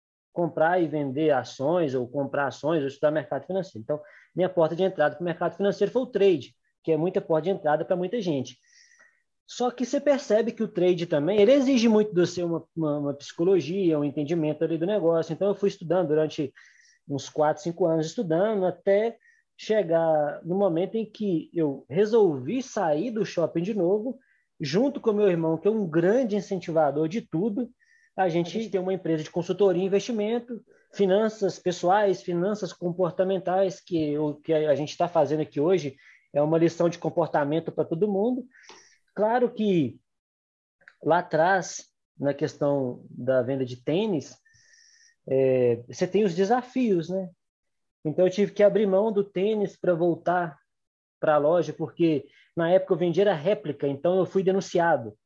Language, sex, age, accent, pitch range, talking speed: Portuguese, male, 20-39, Brazilian, 155-205 Hz, 175 wpm